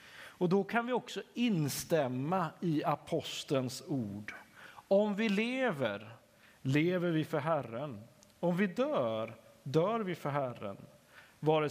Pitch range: 130-180 Hz